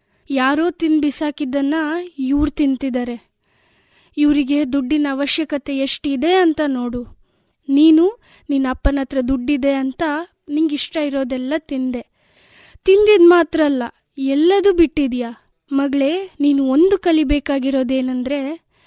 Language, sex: Kannada, female